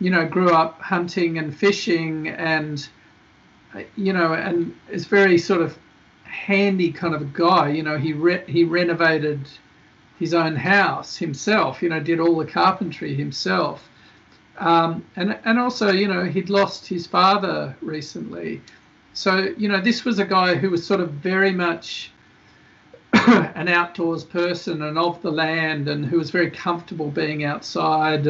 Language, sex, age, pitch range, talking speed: English, male, 50-69, 150-180 Hz, 160 wpm